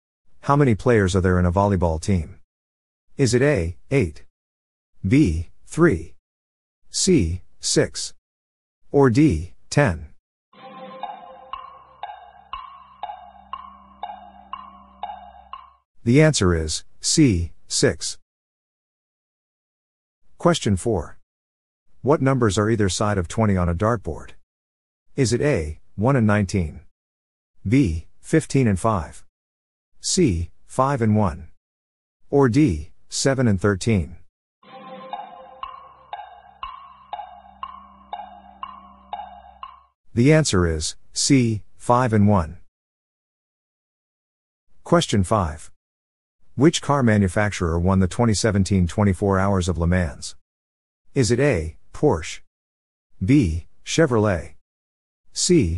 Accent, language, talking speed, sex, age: American, English, 90 wpm, male, 50-69